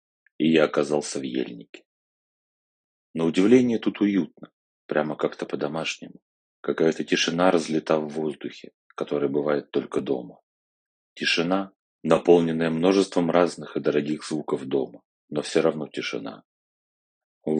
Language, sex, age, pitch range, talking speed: Russian, male, 30-49, 75-90 Hz, 115 wpm